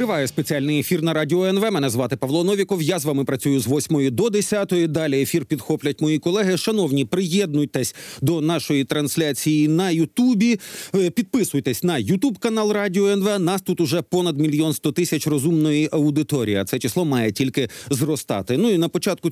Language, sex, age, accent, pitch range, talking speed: Ukrainian, male, 40-59, native, 140-190 Hz, 170 wpm